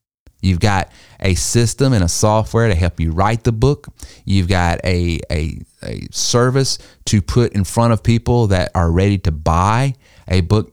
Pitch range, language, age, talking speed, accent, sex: 95-120 Hz, English, 30-49, 180 wpm, American, male